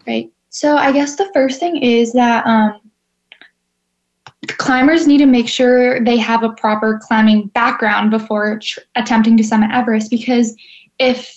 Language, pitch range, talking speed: English, 215-250 Hz, 150 wpm